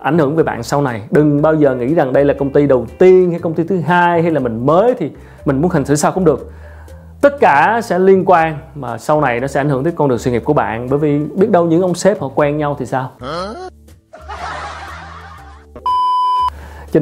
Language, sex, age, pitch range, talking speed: Vietnamese, male, 30-49, 135-170 Hz, 235 wpm